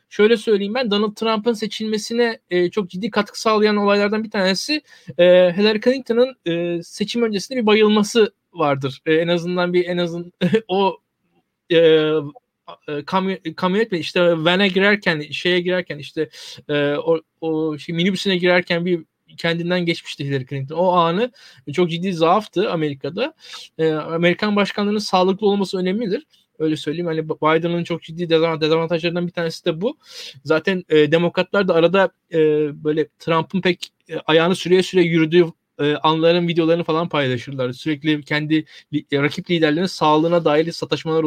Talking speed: 145 wpm